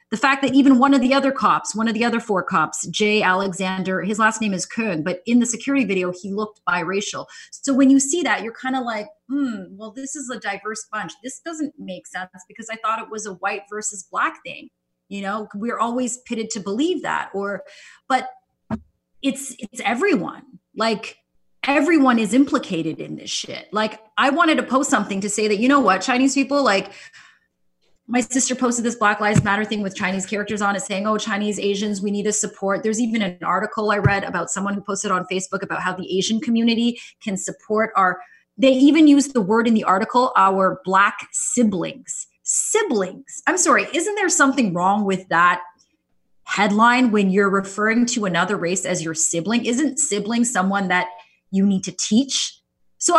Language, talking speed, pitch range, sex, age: English, 195 wpm, 195-255 Hz, female, 30-49